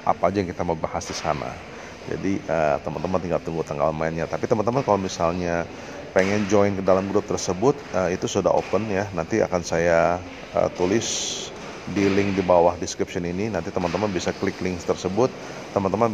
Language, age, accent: Indonesian, 30-49, native